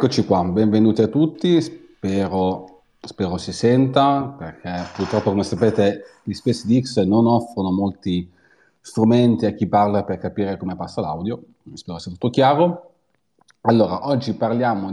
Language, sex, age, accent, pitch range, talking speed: Italian, male, 30-49, native, 90-115 Hz, 135 wpm